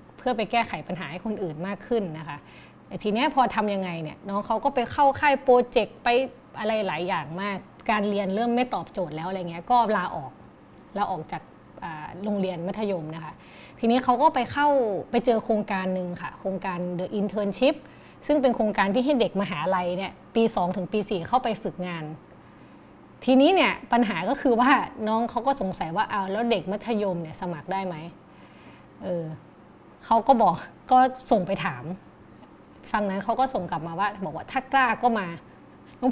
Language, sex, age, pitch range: Thai, female, 20-39, 185-245 Hz